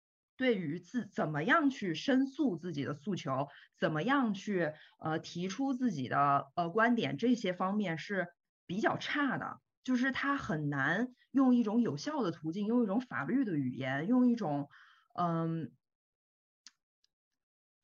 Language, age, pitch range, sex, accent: Chinese, 20-39, 165-250 Hz, female, native